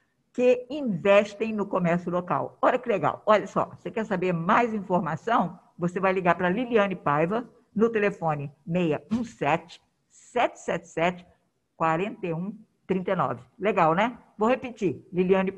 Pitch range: 185-235 Hz